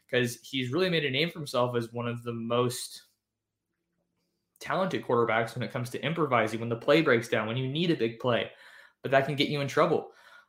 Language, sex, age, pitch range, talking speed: English, male, 20-39, 120-155 Hz, 215 wpm